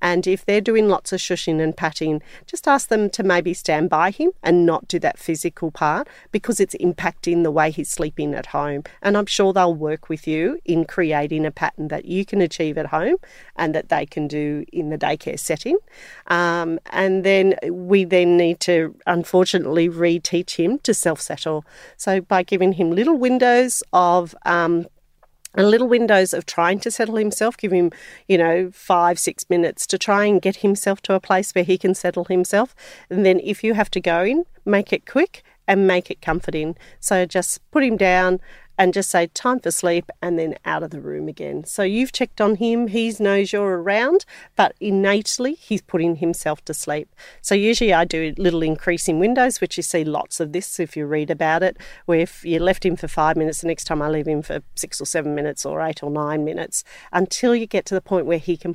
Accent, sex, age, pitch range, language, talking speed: Australian, female, 40-59, 165-205 Hz, English, 210 wpm